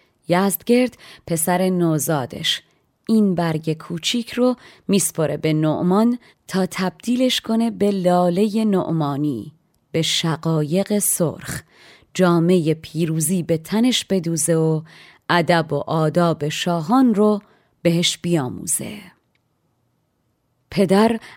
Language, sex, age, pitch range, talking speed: Persian, female, 30-49, 160-190 Hz, 95 wpm